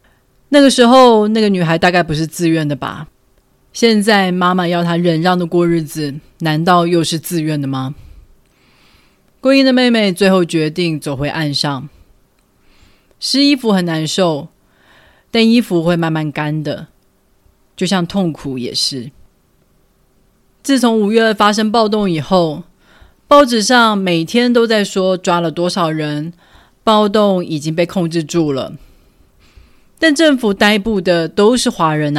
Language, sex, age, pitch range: Chinese, female, 30-49, 160-220 Hz